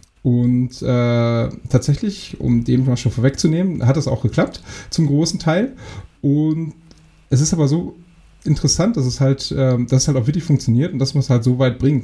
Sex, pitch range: male, 115-135 Hz